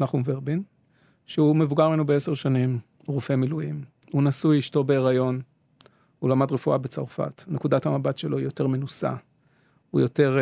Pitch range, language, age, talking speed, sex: 130-155 Hz, Hebrew, 40-59, 145 wpm, male